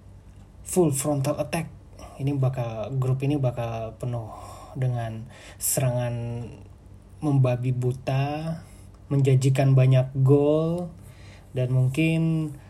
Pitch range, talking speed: 100-140 Hz, 85 wpm